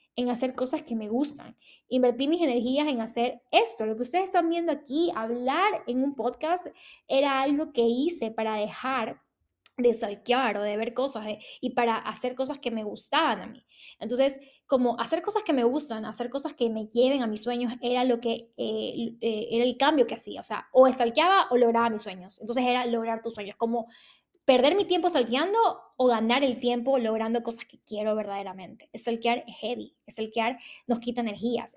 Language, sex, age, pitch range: Spanish, female, 10-29, 225-265 Hz